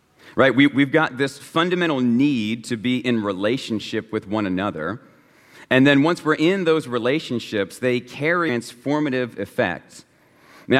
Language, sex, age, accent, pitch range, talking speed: English, male, 40-59, American, 120-155 Hz, 140 wpm